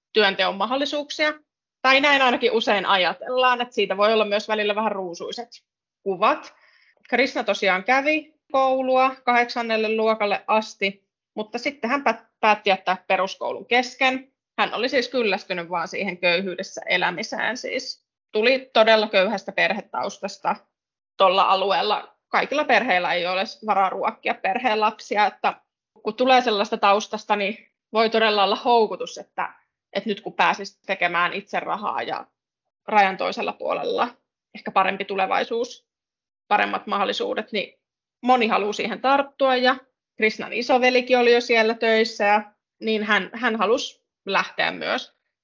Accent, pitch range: native, 200-250 Hz